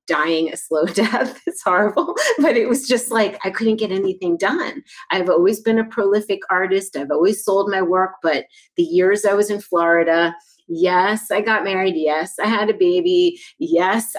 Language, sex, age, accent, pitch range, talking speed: English, female, 30-49, American, 175-240 Hz, 185 wpm